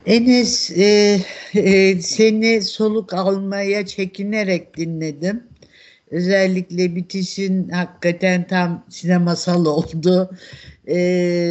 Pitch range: 155-185 Hz